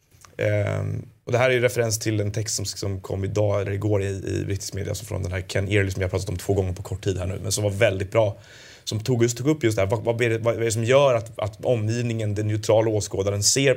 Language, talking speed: Danish, 285 wpm